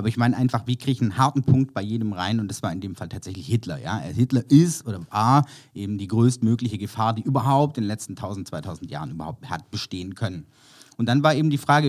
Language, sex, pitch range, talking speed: German, male, 110-135 Hz, 240 wpm